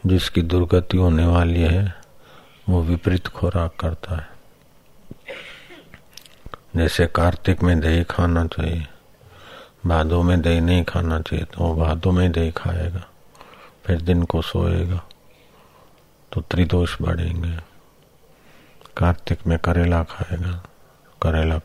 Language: Hindi